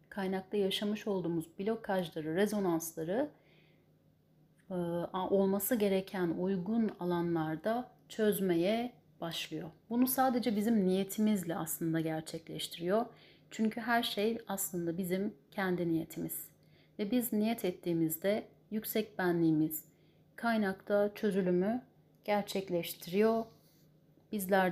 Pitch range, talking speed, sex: 180-225 Hz, 85 wpm, female